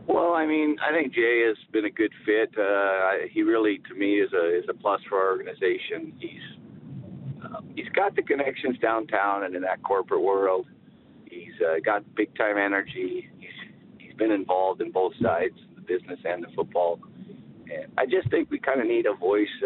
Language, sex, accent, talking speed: English, male, American, 195 wpm